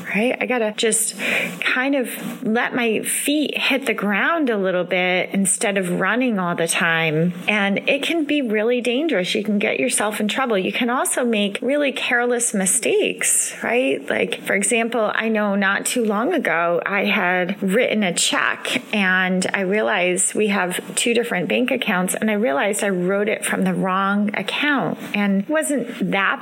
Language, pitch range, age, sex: English, 200-250 Hz, 30-49, female